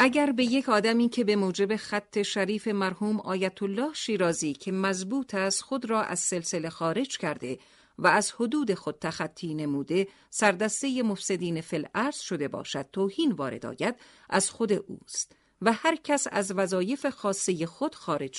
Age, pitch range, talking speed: 50-69, 170-235 Hz, 155 wpm